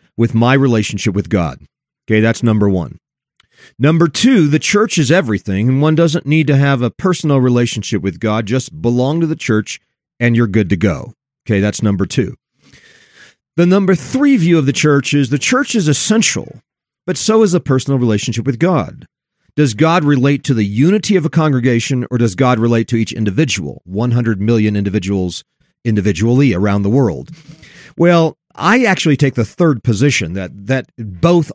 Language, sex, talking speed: English, male, 175 wpm